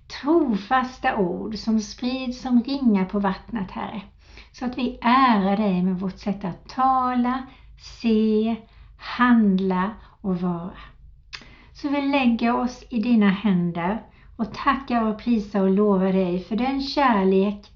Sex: female